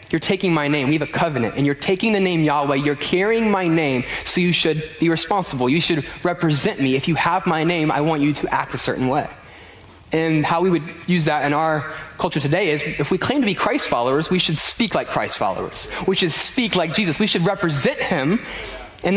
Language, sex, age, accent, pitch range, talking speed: English, male, 20-39, American, 145-180 Hz, 230 wpm